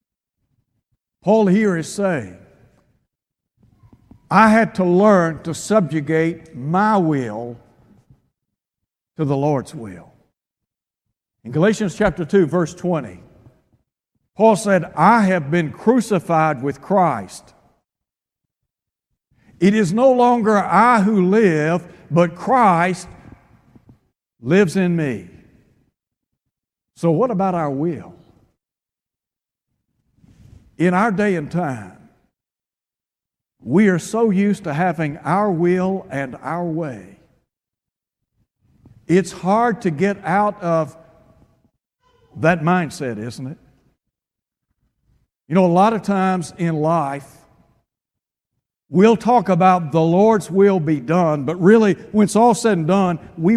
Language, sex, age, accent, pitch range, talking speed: English, male, 60-79, American, 140-195 Hz, 110 wpm